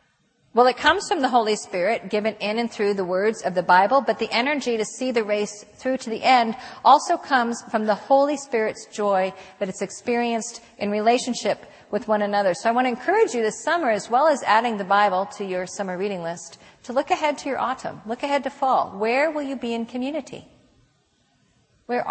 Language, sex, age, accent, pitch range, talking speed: English, female, 50-69, American, 200-255 Hz, 210 wpm